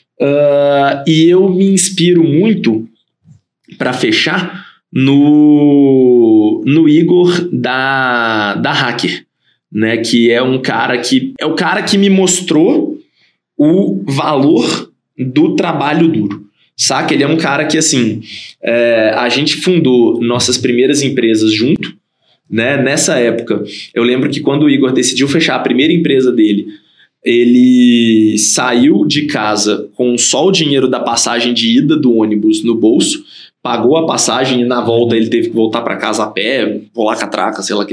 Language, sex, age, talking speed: Portuguese, male, 20-39, 150 wpm